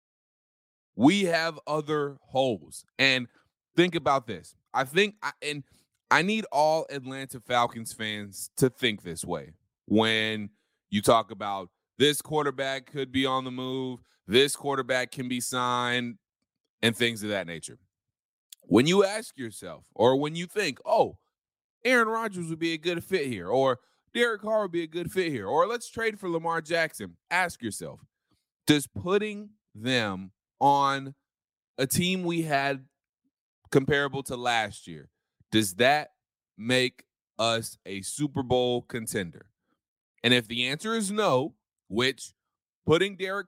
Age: 20-39